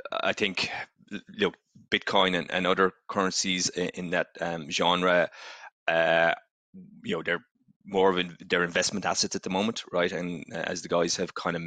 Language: English